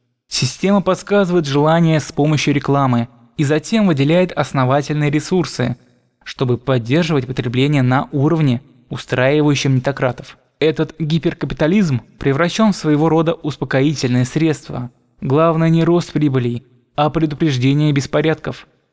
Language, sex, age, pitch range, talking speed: Russian, male, 20-39, 135-170 Hz, 105 wpm